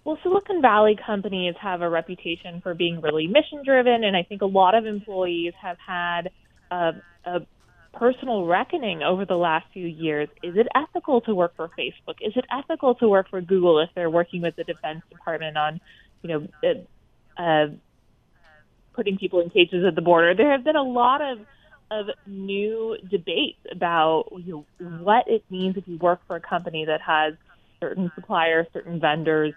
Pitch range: 170-215 Hz